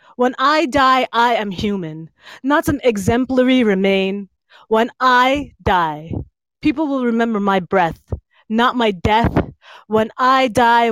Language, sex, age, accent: English, female, 20-39, American